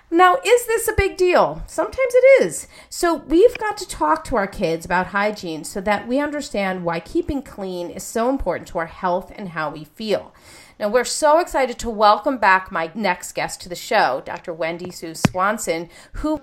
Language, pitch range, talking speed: English, 170-270 Hz, 195 wpm